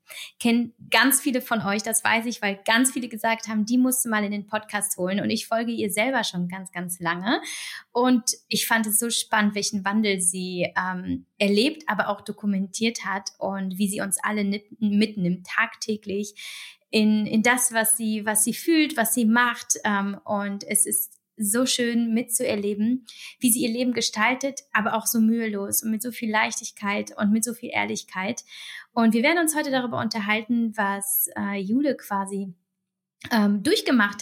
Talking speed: 175 wpm